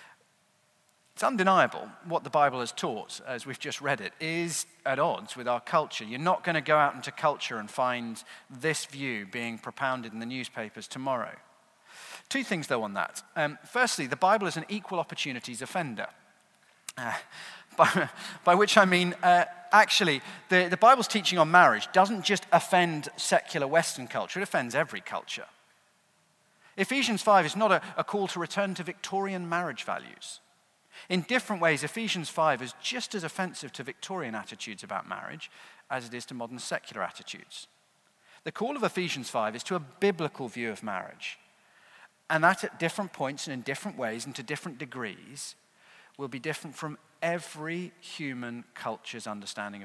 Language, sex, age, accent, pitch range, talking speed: English, male, 40-59, British, 135-190 Hz, 170 wpm